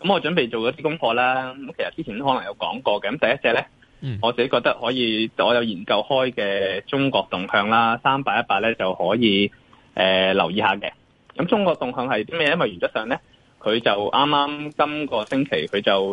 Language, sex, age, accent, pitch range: Chinese, male, 20-39, native, 105-130 Hz